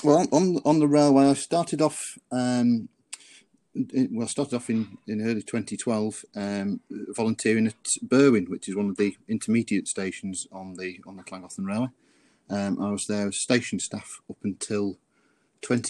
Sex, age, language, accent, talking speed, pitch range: male, 40-59, English, British, 170 wpm, 100-125 Hz